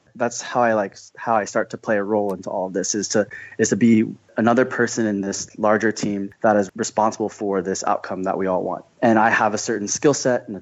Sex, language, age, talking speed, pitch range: male, English, 20-39, 255 wpm, 100-115 Hz